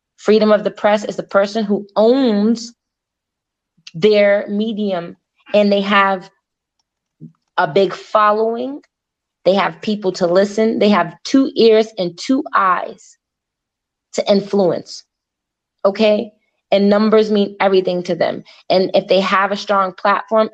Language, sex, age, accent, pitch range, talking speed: English, female, 20-39, American, 185-215 Hz, 130 wpm